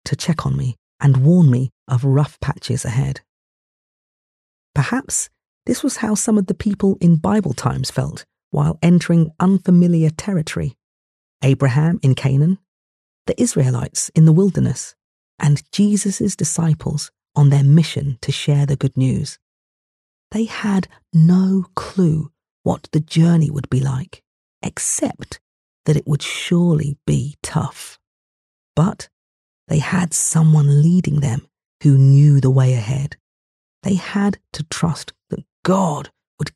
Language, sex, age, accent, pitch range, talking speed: English, female, 40-59, British, 135-170 Hz, 135 wpm